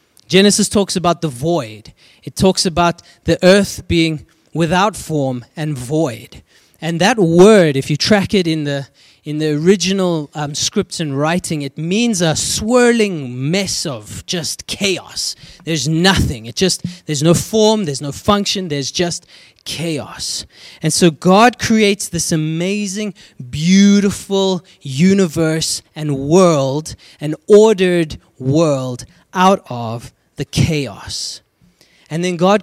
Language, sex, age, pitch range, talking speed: English, male, 20-39, 150-200 Hz, 130 wpm